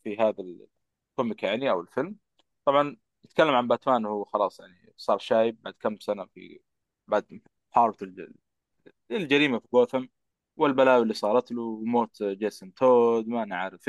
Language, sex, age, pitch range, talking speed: Arabic, male, 20-39, 110-145 Hz, 140 wpm